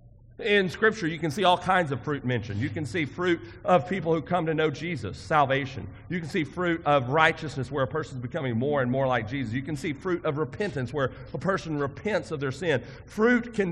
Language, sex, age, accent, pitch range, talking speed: English, male, 40-59, American, 120-170 Hz, 230 wpm